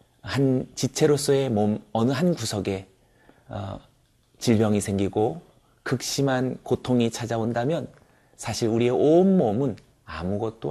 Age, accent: 30-49, native